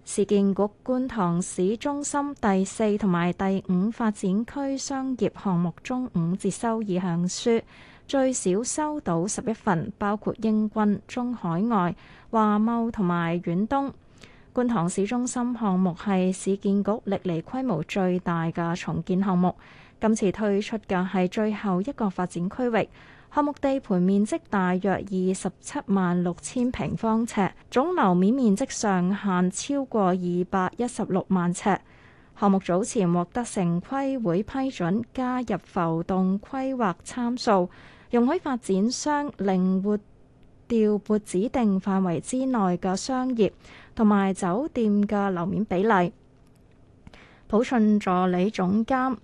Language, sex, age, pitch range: Chinese, female, 20-39, 185-235 Hz